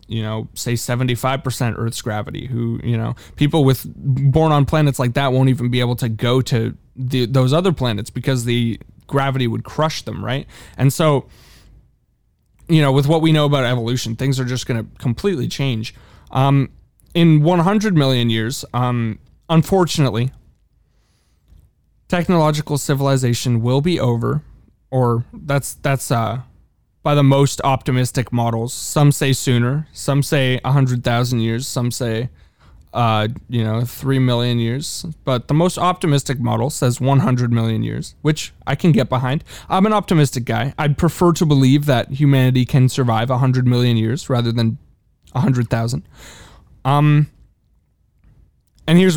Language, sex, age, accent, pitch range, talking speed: English, male, 20-39, American, 115-145 Hz, 155 wpm